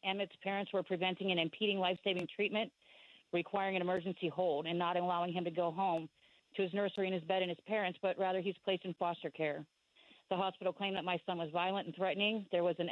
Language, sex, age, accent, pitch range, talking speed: English, female, 40-59, American, 180-200 Hz, 230 wpm